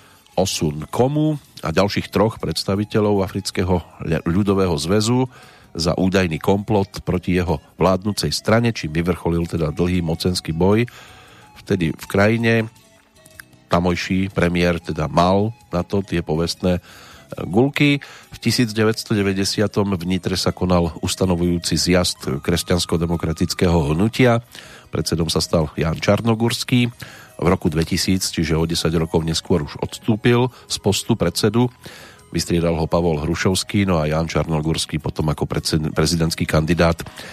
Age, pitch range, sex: 40-59, 85-105 Hz, male